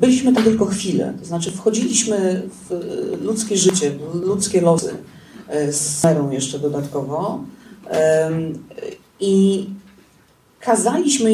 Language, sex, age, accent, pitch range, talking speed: Polish, female, 40-59, native, 170-225 Hz, 100 wpm